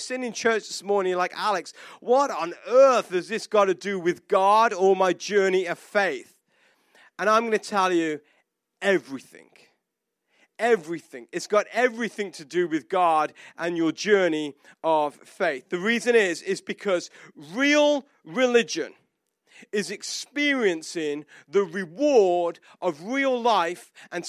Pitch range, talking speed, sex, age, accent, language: 185-245 Hz, 140 wpm, male, 40-59, British, English